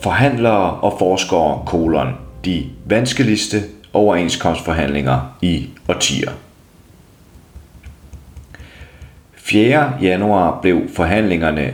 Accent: native